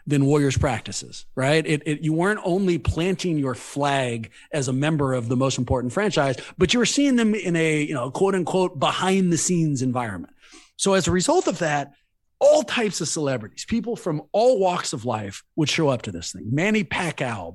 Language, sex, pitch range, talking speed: English, male, 135-195 Hz, 195 wpm